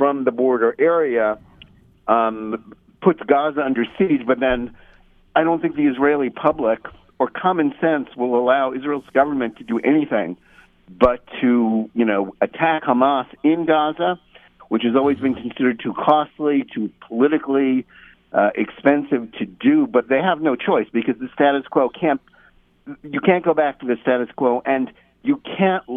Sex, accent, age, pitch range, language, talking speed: male, American, 50-69, 115-150 Hz, English, 160 wpm